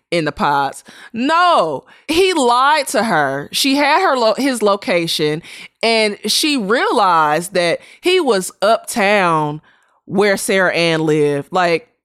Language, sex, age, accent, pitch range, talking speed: English, female, 20-39, American, 145-200 Hz, 125 wpm